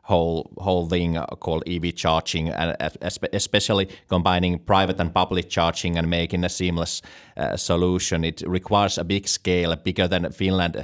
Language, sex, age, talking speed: English, male, 30-49, 150 wpm